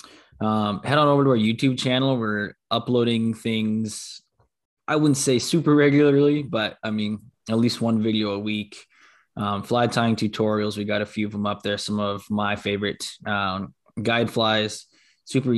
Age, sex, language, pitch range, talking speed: 20-39, male, English, 100-110 Hz, 175 wpm